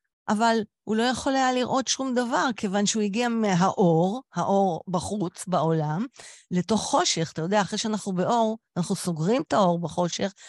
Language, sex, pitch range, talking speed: Hebrew, female, 165-230 Hz, 155 wpm